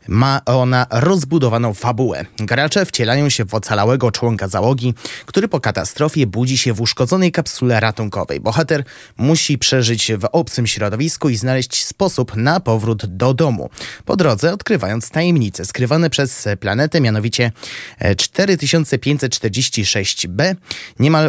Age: 20-39